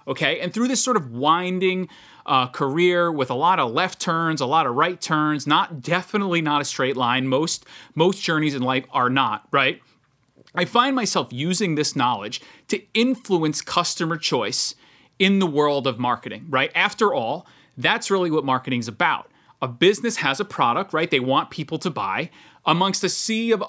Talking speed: 180 wpm